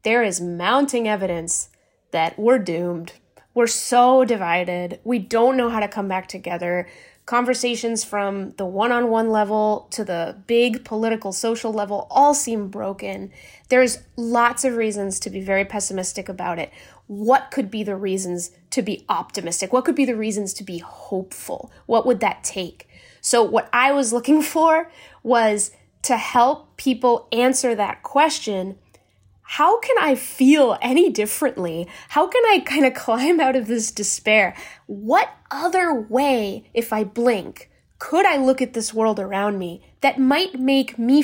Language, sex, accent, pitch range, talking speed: English, female, American, 200-270 Hz, 160 wpm